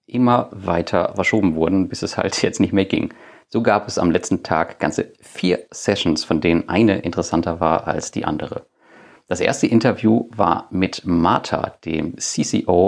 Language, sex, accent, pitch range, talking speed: German, male, German, 85-110 Hz, 170 wpm